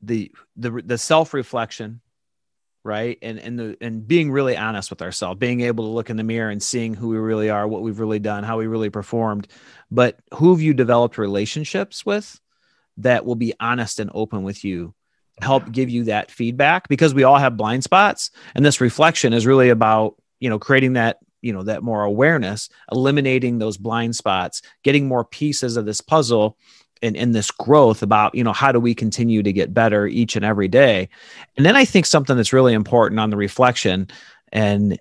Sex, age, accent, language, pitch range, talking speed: male, 40-59, American, English, 110-135 Hz, 195 wpm